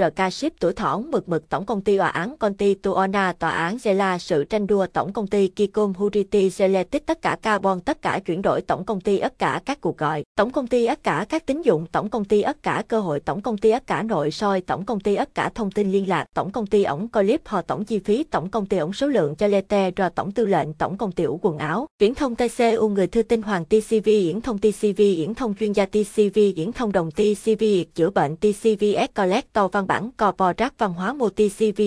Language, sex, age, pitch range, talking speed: Vietnamese, female, 20-39, 190-220 Hz, 235 wpm